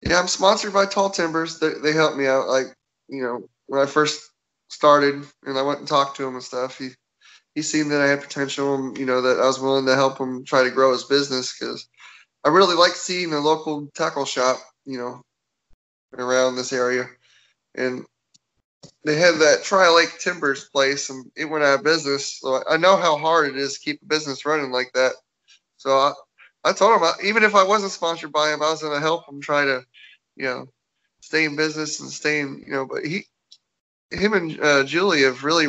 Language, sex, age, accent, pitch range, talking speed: English, male, 20-39, American, 130-155 Hz, 215 wpm